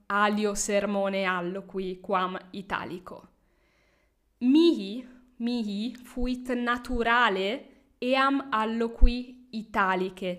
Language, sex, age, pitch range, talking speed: English, female, 10-29, 200-245 Hz, 70 wpm